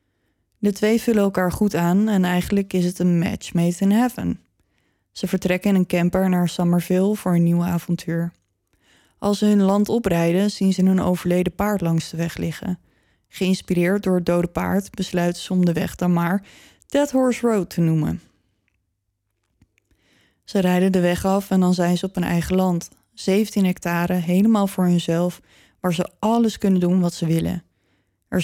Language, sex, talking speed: Dutch, female, 175 wpm